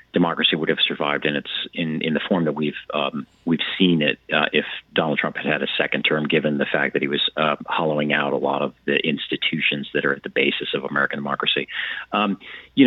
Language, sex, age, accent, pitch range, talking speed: English, male, 40-59, American, 80-95 Hz, 230 wpm